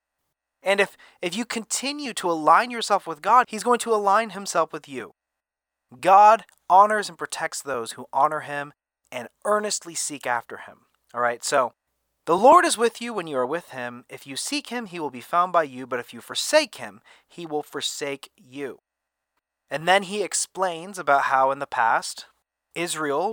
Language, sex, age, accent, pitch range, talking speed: English, male, 30-49, American, 140-195 Hz, 185 wpm